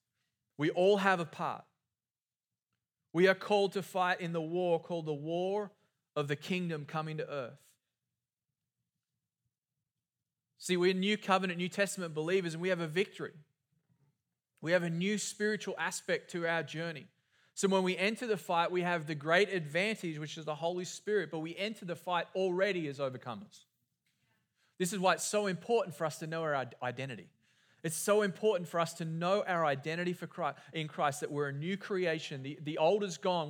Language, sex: English, male